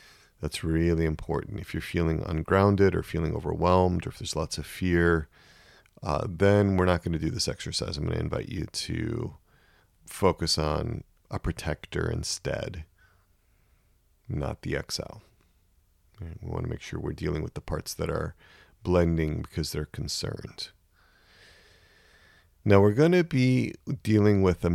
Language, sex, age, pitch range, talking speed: English, male, 40-59, 80-100 Hz, 155 wpm